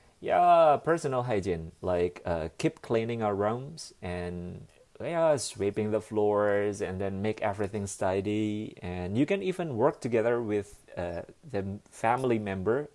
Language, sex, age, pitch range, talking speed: English, male, 30-49, 95-125 Hz, 135 wpm